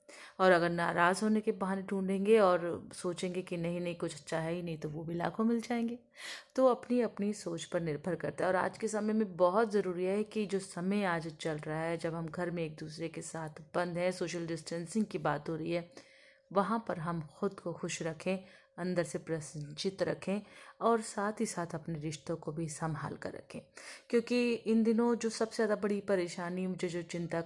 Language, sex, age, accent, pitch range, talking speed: Hindi, female, 30-49, native, 170-195 Hz, 210 wpm